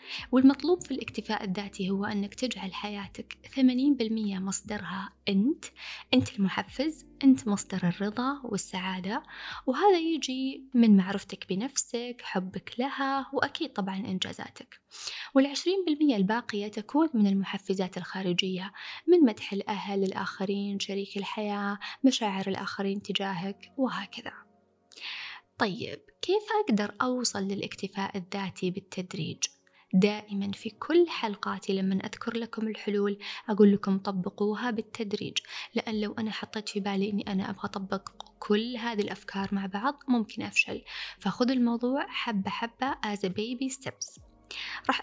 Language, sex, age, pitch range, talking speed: Arabic, female, 20-39, 195-255 Hz, 120 wpm